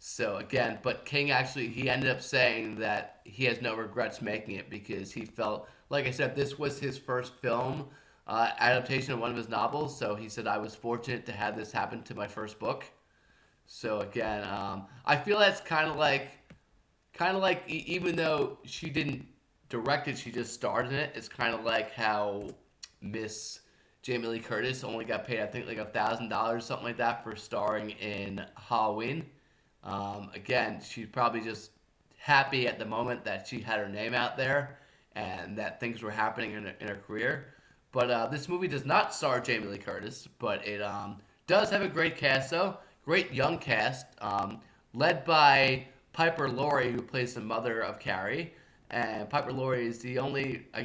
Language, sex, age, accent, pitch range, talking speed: English, male, 20-39, American, 110-140 Hz, 190 wpm